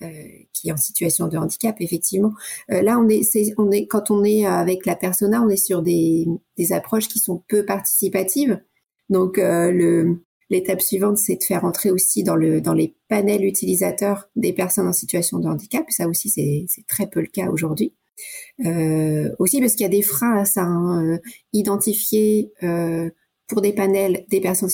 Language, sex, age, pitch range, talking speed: French, female, 30-49, 170-205 Hz, 195 wpm